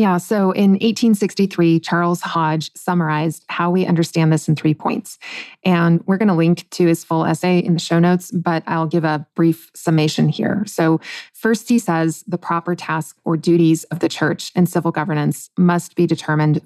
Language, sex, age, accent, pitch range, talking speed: English, female, 30-49, American, 165-195 Hz, 185 wpm